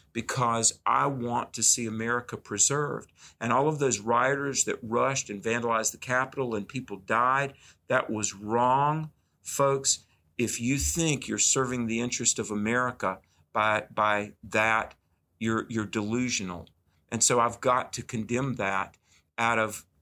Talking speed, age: 145 wpm, 50-69